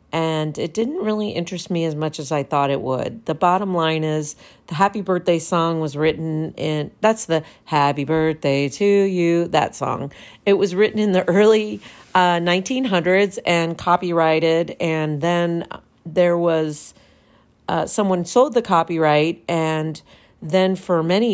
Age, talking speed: 40-59, 155 wpm